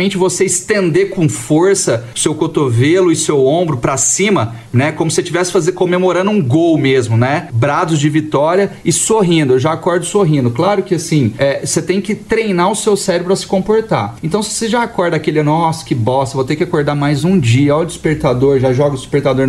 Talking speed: 205 wpm